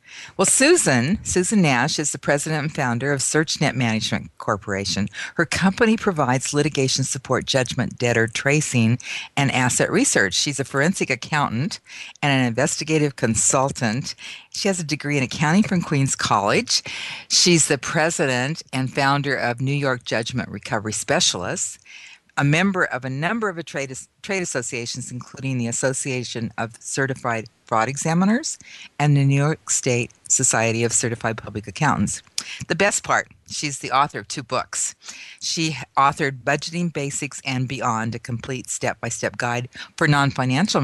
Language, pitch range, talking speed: English, 120-160 Hz, 145 wpm